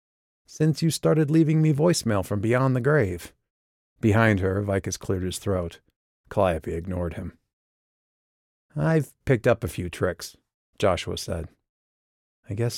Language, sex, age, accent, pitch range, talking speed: English, male, 40-59, American, 85-120 Hz, 135 wpm